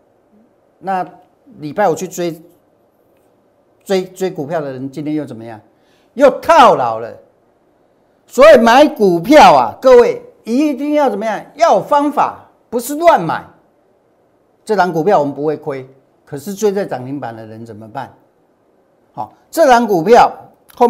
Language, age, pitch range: Chinese, 50-69, 130-205 Hz